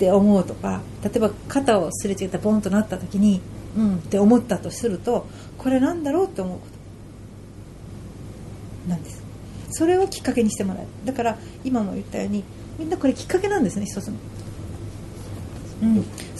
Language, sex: Japanese, female